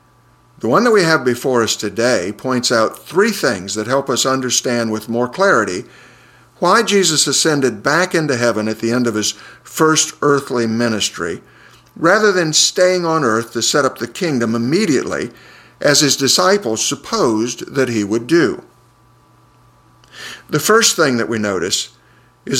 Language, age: English, 50-69